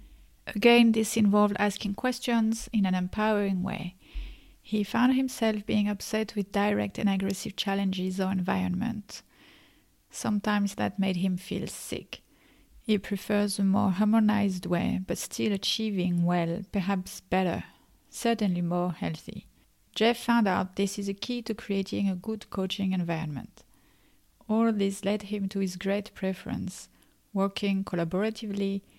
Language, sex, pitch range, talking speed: English, female, 190-220 Hz, 135 wpm